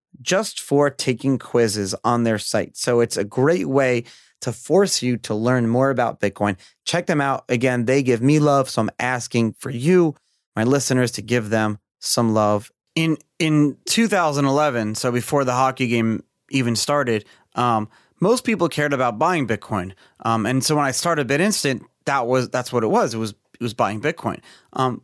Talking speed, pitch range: 185 wpm, 120-160 Hz